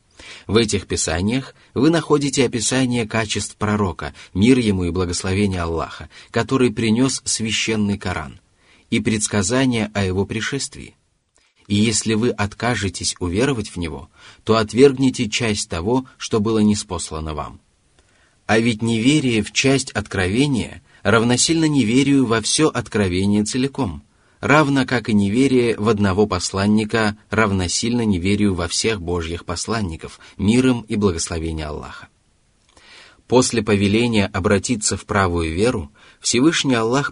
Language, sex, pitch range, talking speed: Russian, male, 95-125 Hz, 120 wpm